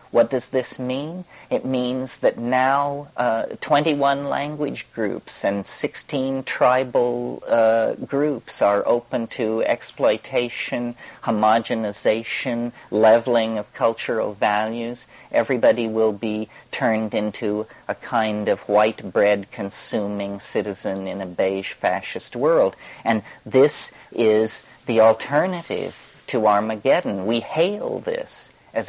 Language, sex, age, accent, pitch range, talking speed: English, male, 50-69, American, 110-140 Hz, 110 wpm